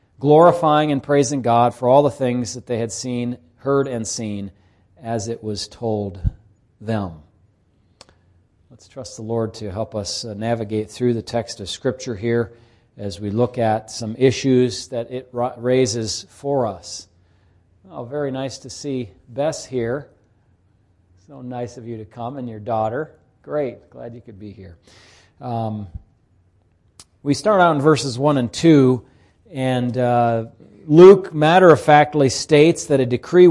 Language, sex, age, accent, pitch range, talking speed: English, male, 40-59, American, 110-140 Hz, 150 wpm